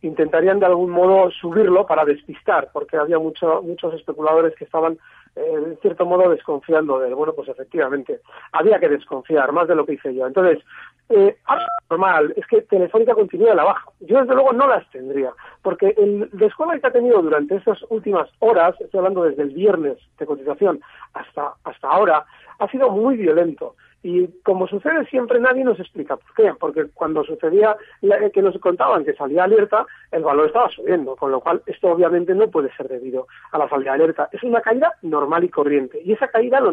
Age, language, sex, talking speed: 40-59, Spanish, male, 200 wpm